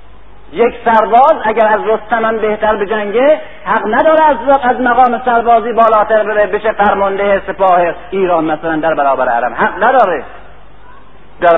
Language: Persian